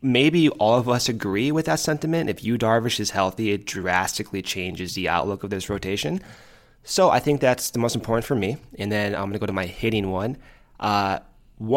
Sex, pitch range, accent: male, 100-130 Hz, American